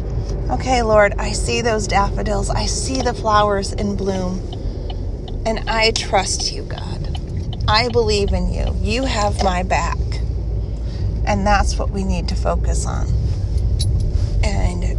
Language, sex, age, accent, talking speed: English, female, 30-49, American, 135 wpm